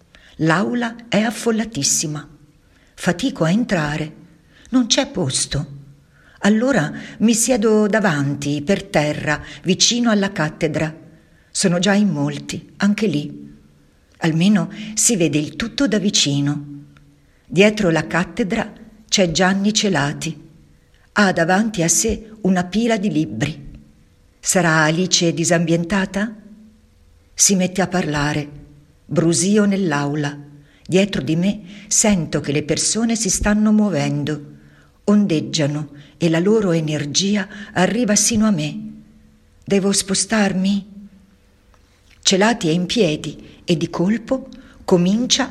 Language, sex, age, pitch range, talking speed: Italian, female, 50-69, 150-210 Hz, 110 wpm